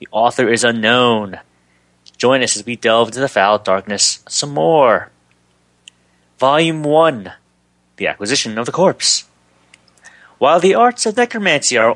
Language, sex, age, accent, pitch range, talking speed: English, male, 30-49, American, 90-135 Hz, 140 wpm